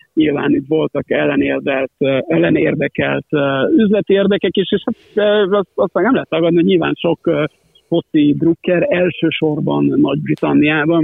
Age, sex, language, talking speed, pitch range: 50-69, male, Hungarian, 115 wpm, 145-180 Hz